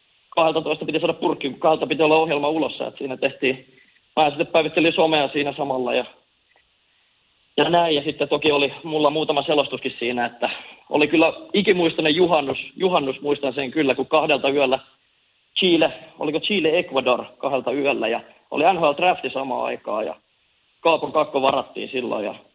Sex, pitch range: male, 135-160 Hz